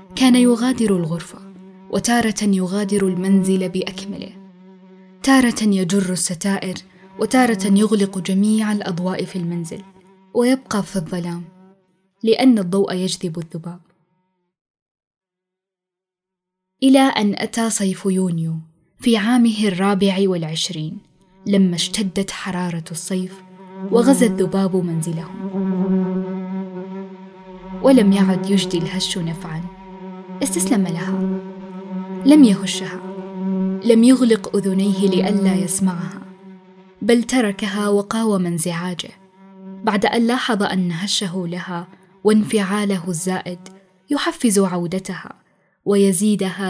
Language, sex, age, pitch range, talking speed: Arabic, female, 10-29, 180-205 Hz, 85 wpm